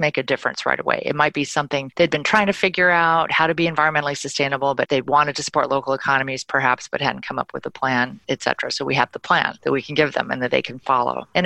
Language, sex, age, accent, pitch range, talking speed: English, female, 40-59, American, 130-160 Hz, 270 wpm